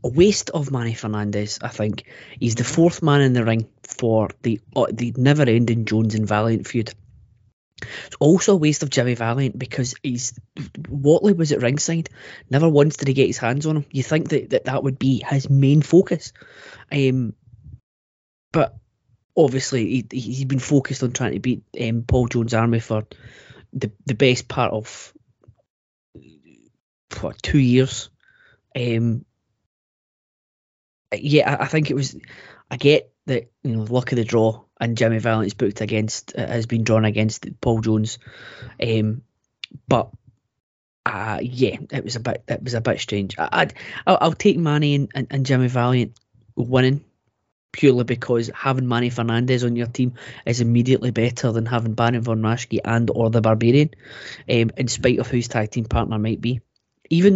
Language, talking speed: English, 170 wpm